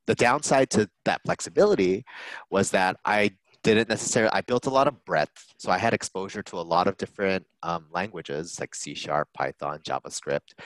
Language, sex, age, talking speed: English, male, 30-49, 180 wpm